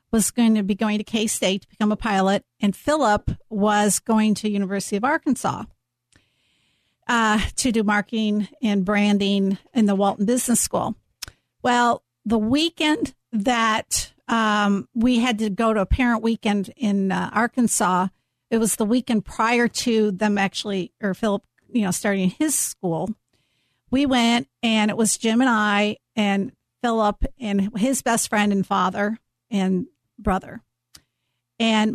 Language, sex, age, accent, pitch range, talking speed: English, female, 50-69, American, 200-240 Hz, 150 wpm